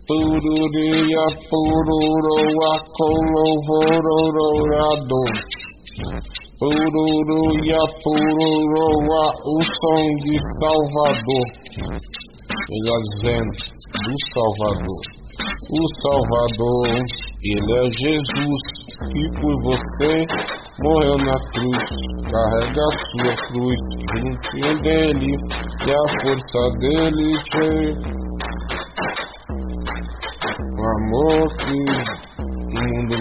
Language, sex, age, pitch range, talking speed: Portuguese, male, 50-69, 115-155 Hz, 65 wpm